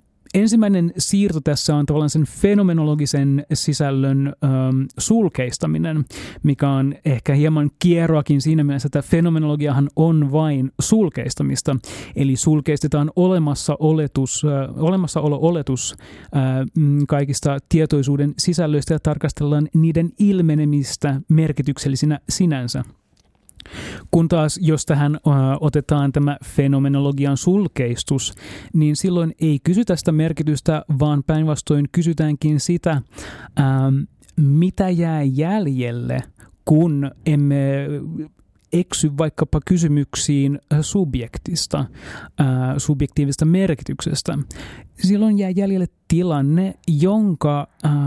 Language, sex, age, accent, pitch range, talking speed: Finnish, male, 30-49, native, 135-160 Hz, 85 wpm